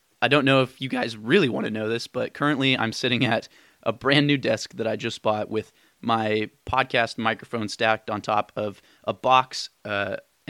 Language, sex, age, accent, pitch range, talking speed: English, male, 20-39, American, 110-130 Hz, 200 wpm